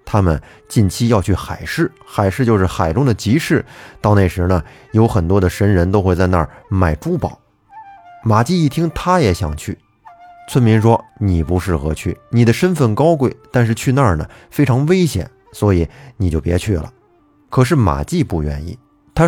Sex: male